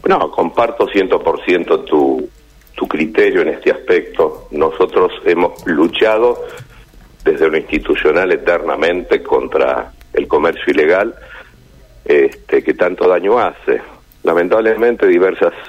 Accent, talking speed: Argentinian, 105 wpm